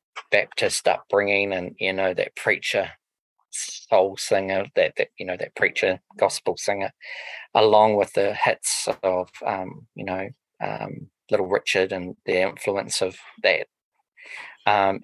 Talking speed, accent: 135 wpm, Australian